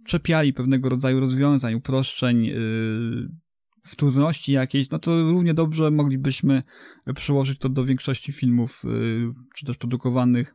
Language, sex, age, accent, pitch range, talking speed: English, male, 20-39, Polish, 120-140 Hz, 125 wpm